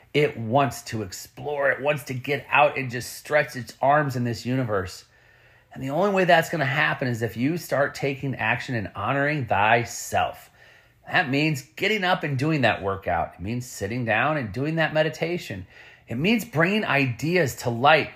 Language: English